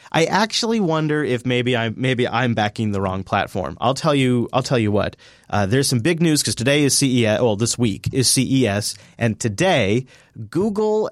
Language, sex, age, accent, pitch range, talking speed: English, male, 30-49, American, 115-155 Hz, 200 wpm